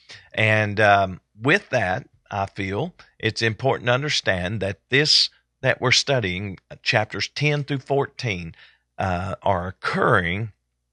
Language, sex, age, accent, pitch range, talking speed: English, male, 50-69, American, 90-110 Hz, 125 wpm